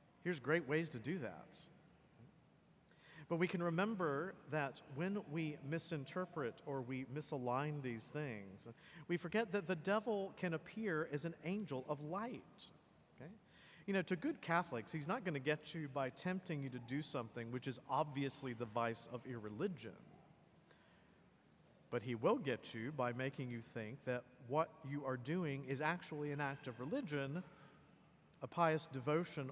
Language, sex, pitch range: English, male, 135-175 Hz